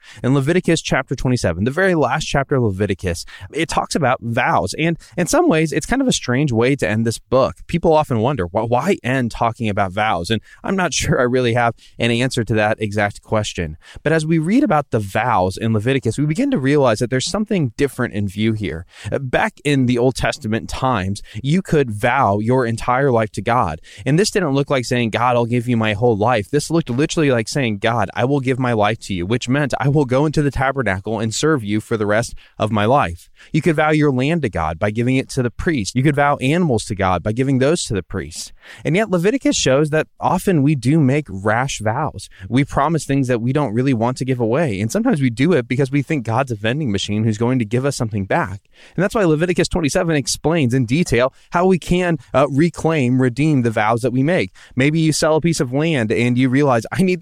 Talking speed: 235 wpm